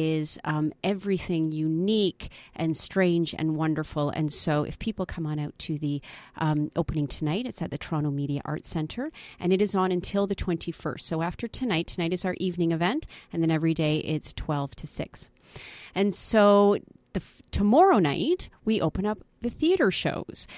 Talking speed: 180 wpm